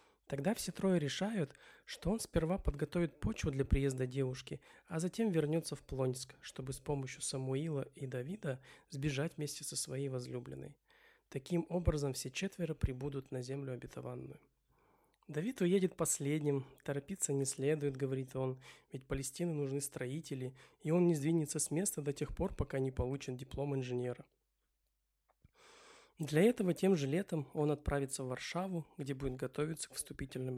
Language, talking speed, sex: Russian, 150 wpm, male